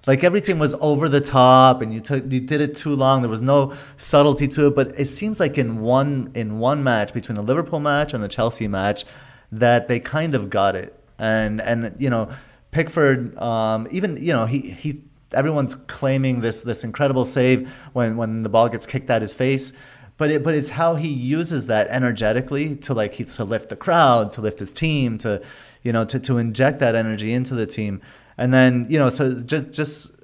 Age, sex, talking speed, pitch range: 30-49, male, 210 wpm, 115-140 Hz